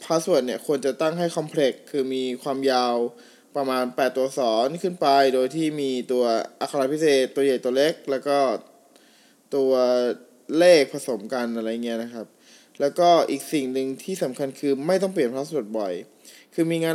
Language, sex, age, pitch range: Thai, male, 20-39, 125-155 Hz